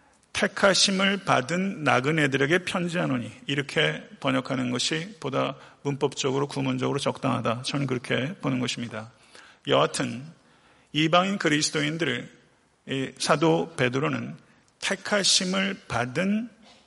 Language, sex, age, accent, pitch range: Korean, male, 40-59, native, 135-180 Hz